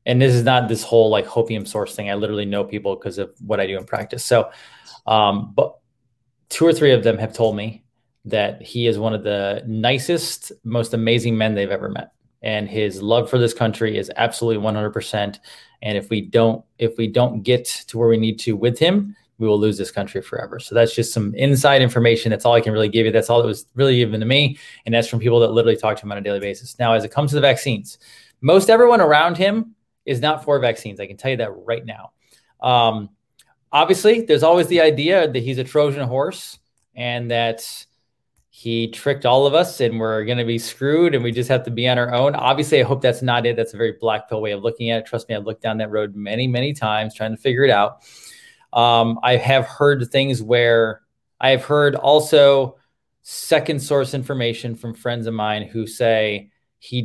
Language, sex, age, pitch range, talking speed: English, male, 20-39, 110-130 Hz, 225 wpm